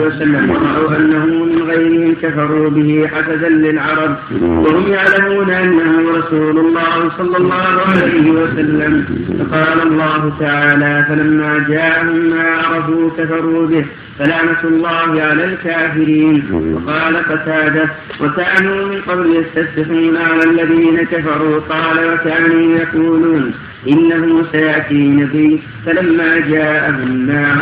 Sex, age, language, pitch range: male, 50-69, Arabic, 155-165 Hz